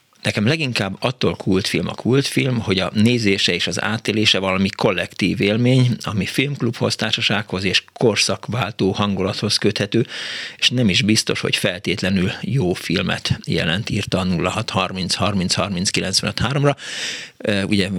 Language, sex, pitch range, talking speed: Hungarian, male, 95-115 Hz, 135 wpm